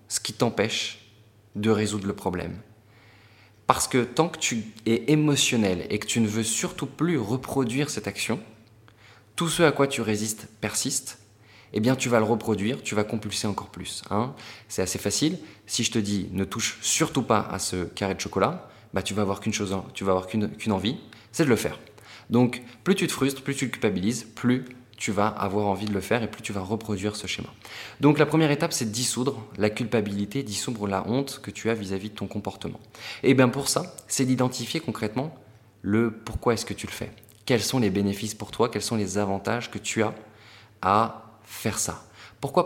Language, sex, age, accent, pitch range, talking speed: French, male, 20-39, French, 105-125 Hz, 210 wpm